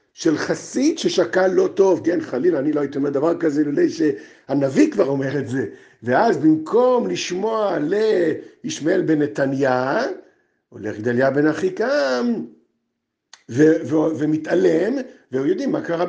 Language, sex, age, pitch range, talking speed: Hebrew, male, 50-69, 155-260 Hz, 140 wpm